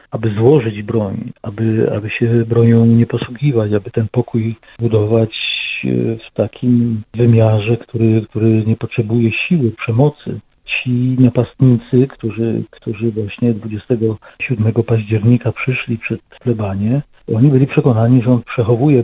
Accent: native